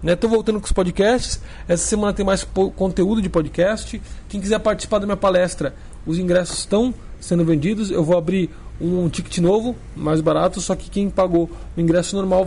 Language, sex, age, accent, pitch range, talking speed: Portuguese, male, 20-39, Brazilian, 160-195 Hz, 190 wpm